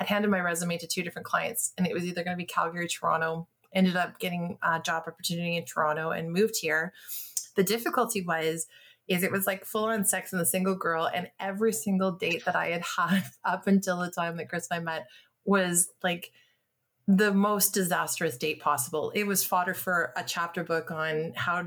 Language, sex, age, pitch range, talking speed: English, female, 30-49, 175-210 Hz, 210 wpm